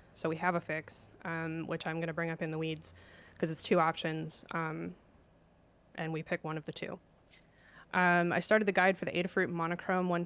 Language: English